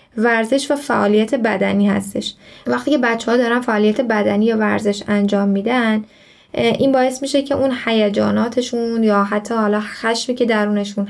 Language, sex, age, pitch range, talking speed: Persian, female, 10-29, 200-245 Hz, 150 wpm